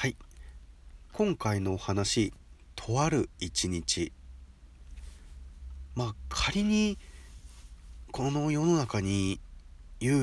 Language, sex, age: Japanese, male, 40-59